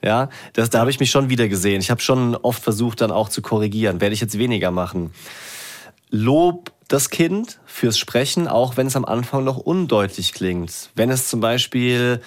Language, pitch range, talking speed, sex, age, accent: German, 115-150 Hz, 190 wpm, male, 30-49, German